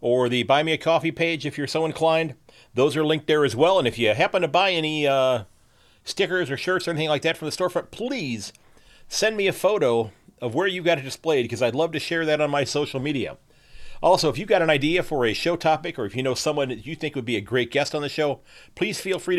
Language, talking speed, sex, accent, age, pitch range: English, 265 wpm, male, American, 40-59, 130-160 Hz